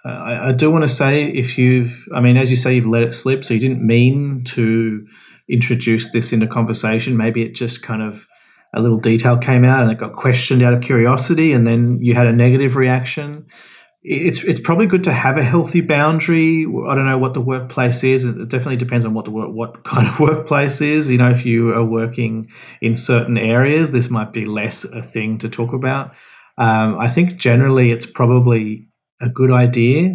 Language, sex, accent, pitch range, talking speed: English, male, Australian, 115-130 Hz, 205 wpm